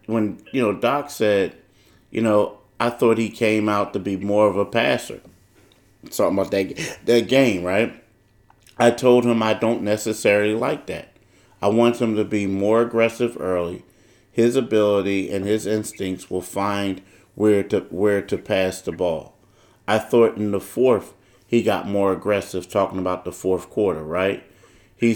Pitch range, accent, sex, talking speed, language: 95-115 Hz, American, male, 170 wpm, English